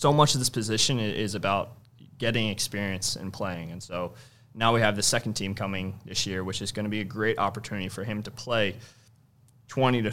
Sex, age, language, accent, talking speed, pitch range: male, 20-39, English, American, 215 wpm, 100-120 Hz